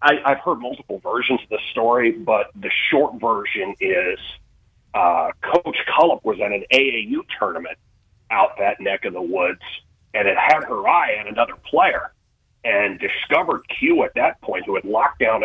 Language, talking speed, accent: English, 170 wpm, American